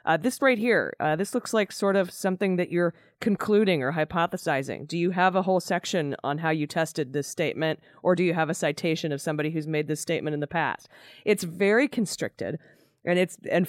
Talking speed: 215 wpm